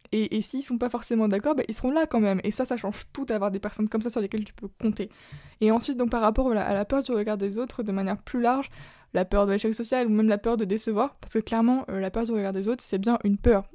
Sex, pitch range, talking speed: female, 205-240 Hz, 310 wpm